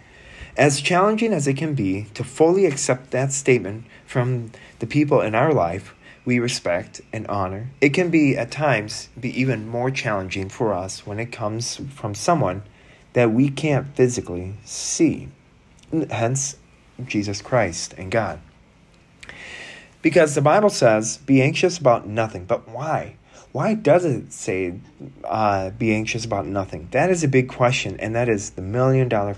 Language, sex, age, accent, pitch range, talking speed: English, male, 30-49, American, 100-140 Hz, 155 wpm